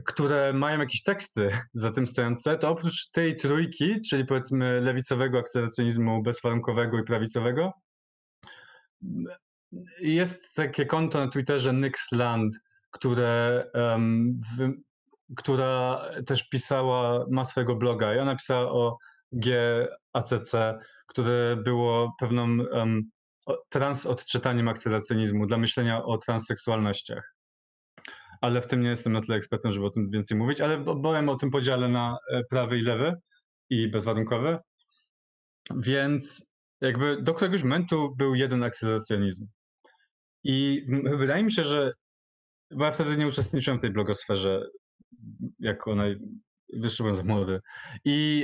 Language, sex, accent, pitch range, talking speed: Polish, male, native, 115-140 Hz, 115 wpm